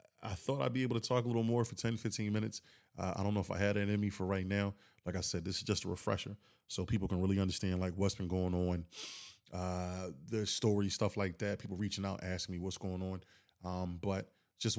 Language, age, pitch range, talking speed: English, 20-39, 95-105 Hz, 250 wpm